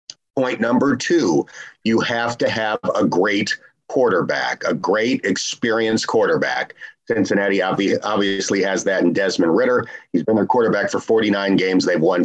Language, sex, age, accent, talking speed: English, male, 40-59, American, 145 wpm